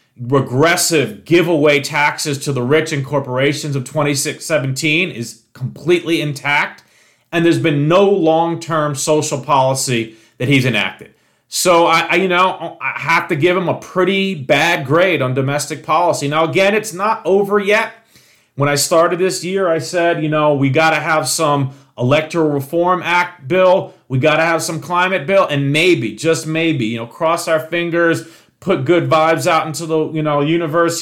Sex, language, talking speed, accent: male, English, 175 wpm, American